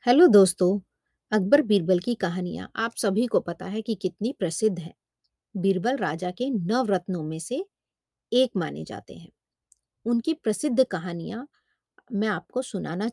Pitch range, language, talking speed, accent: 175-235 Hz, Hindi, 135 wpm, native